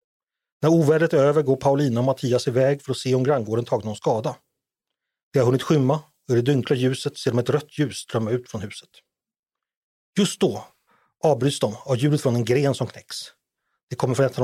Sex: male